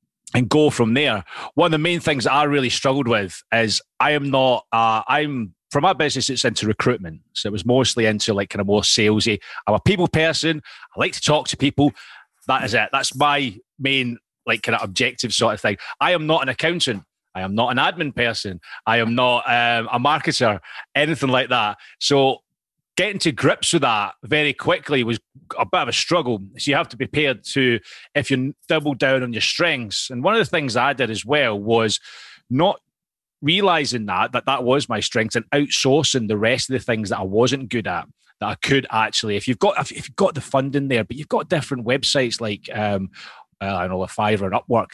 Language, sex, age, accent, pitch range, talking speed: English, male, 30-49, British, 110-145 Hz, 220 wpm